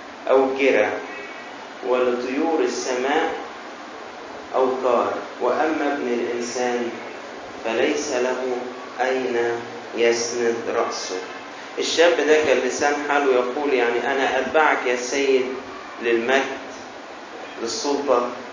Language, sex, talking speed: Arabic, male, 85 wpm